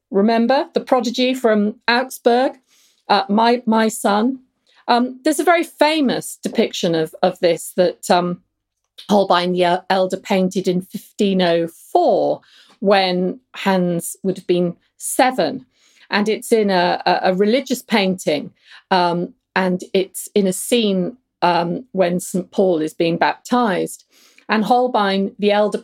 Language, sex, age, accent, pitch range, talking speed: English, female, 40-59, British, 185-245 Hz, 130 wpm